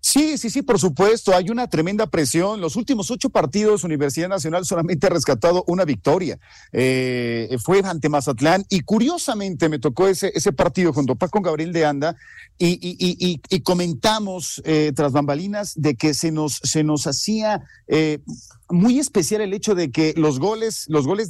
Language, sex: Spanish, male